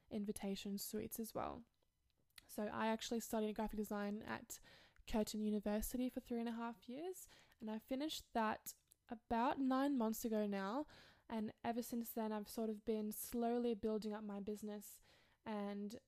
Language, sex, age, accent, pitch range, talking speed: English, female, 10-29, Australian, 210-235 Hz, 155 wpm